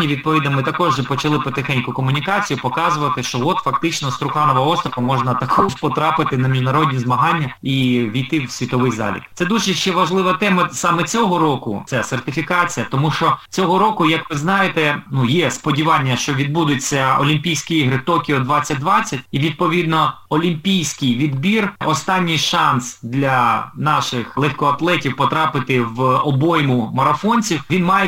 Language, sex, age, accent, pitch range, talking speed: Ukrainian, male, 20-39, native, 135-170 Hz, 140 wpm